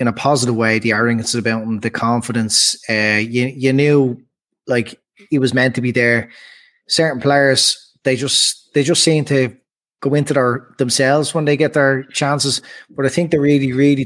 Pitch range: 130-150 Hz